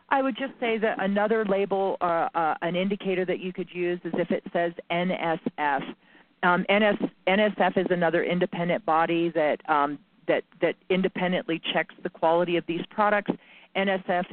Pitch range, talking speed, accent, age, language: 160-200 Hz, 165 wpm, American, 40-59, English